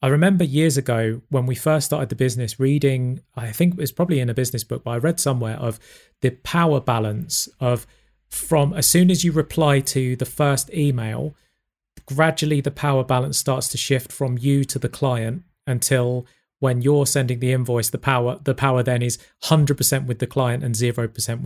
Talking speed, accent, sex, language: 195 wpm, British, male, English